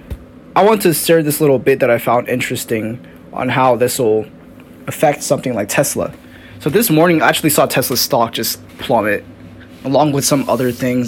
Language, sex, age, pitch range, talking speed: English, male, 10-29, 115-145 Hz, 185 wpm